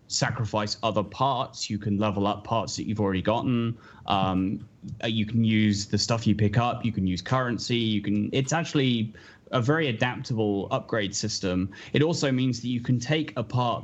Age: 10-29